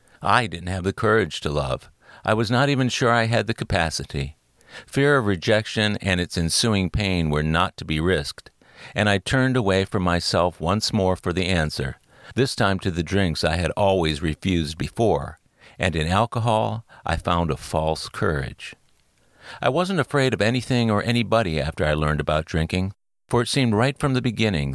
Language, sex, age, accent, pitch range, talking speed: English, male, 50-69, American, 80-110 Hz, 185 wpm